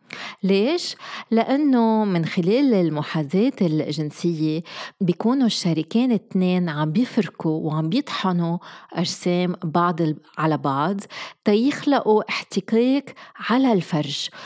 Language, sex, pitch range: Arabic, female, 170-235 Hz